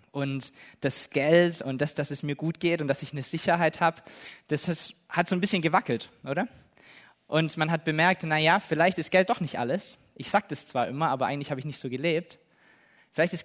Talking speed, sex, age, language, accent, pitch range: 215 wpm, male, 20-39, German, German, 140-170 Hz